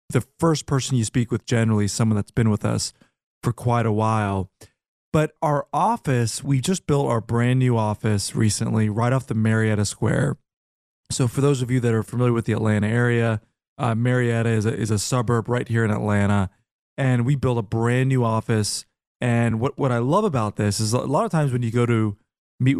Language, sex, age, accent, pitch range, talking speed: English, male, 30-49, American, 110-130 Hz, 210 wpm